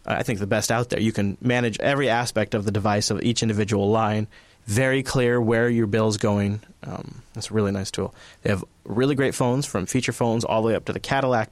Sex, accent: male, American